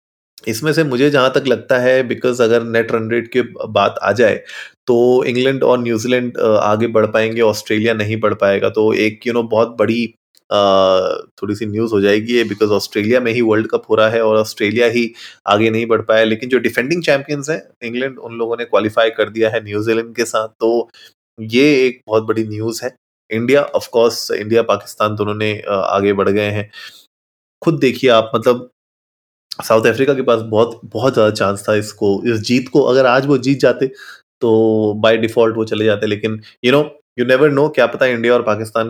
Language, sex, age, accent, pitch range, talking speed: Hindi, male, 20-39, native, 110-125 Hz, 200 wpm